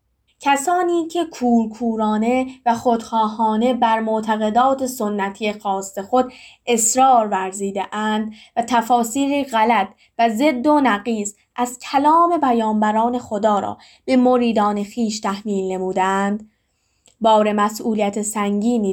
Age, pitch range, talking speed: 10-29, 210-255 Hz, 105 wpm